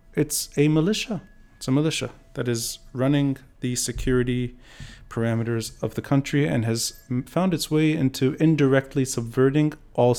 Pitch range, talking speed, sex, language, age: 115-135 Hz, 140 wpm, male, English, 30-49